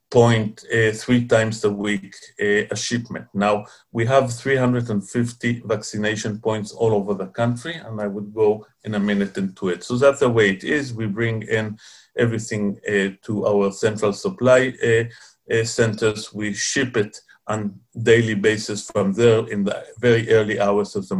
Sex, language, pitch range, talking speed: male, Dutch, 105-120 Hz, 175 wpm